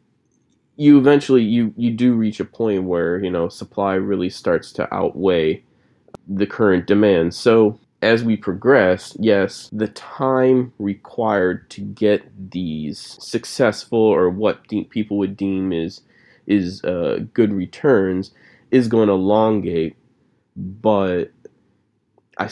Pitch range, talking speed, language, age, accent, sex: 95-120 Hz, 130 wpm, English, 20-39, American, male